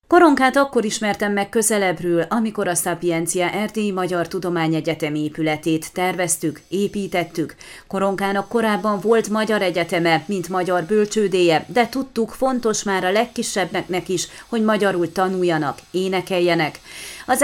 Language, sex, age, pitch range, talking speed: Hungarian, female, 30-49, 175-215 Hz, 115 wpm